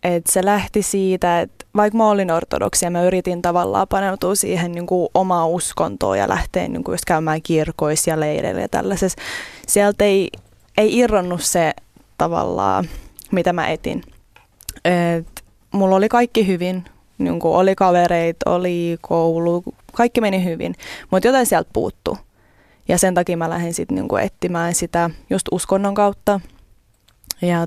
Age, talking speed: 20-39, 140 wpm